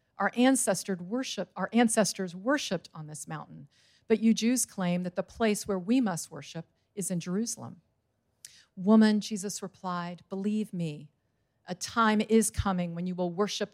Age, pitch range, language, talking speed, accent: 50-69, 160-200 Hz, English, 145 wpm, American